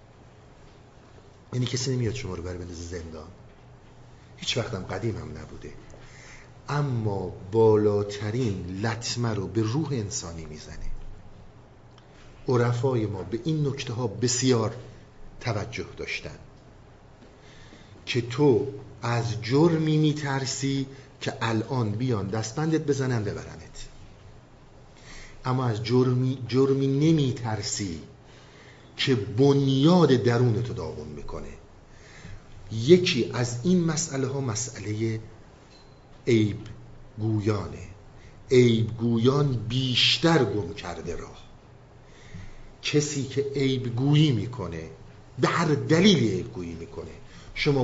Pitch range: 105-135 Hz